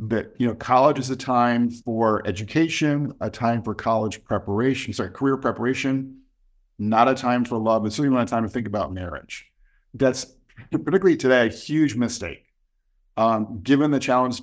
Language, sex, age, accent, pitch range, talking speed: English, male, 50-69, American, 110-125 Hz, 170 wpm